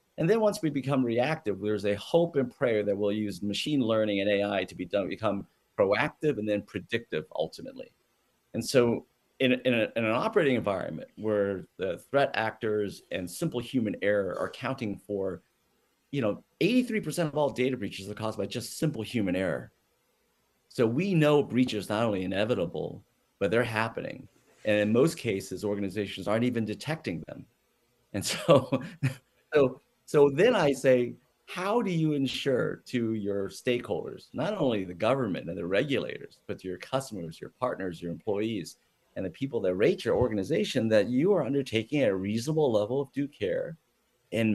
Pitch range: 105-135 Hz